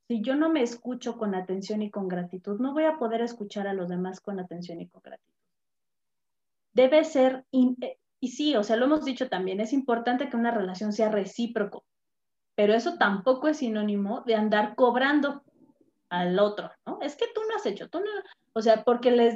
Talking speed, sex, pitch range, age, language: 200 wpm, female, 205-275 Hz, 30-49, Spanish